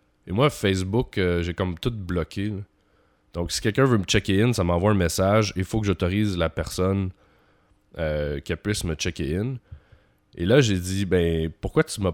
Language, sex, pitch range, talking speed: French, male, 85-110 Hz, 205 wpm